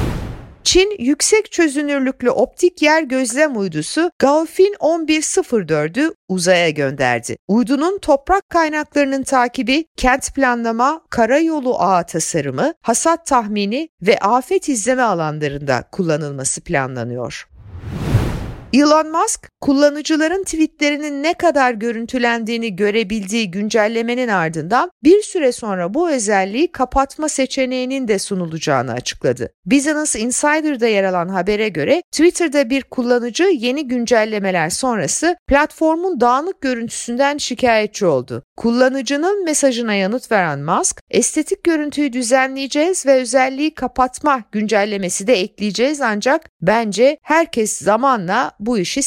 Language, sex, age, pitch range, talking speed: Turkish, female, 50-69, 210-300 Hz, 105 wpm